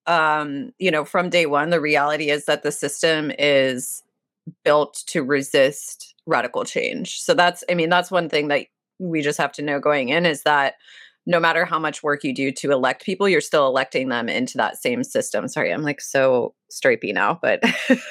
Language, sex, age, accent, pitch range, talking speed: English, female, 20-39, American, 145-190 Hz, 200 wpm